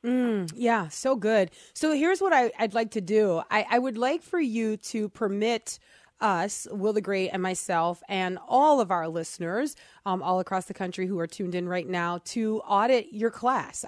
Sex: female